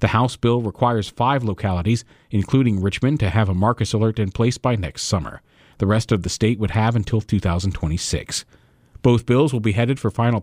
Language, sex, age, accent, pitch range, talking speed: English, male, 40-59, American, 100-130 Hz, 195 wpm